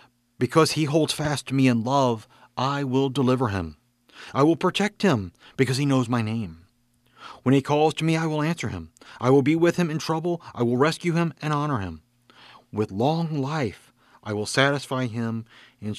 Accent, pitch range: American, 110-135 Hz